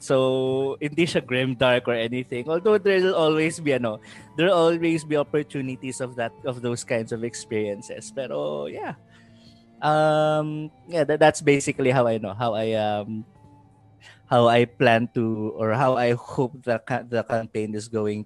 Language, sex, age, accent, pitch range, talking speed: English, male, 20-39, Filipino, 115-150 Hz, 165 wpm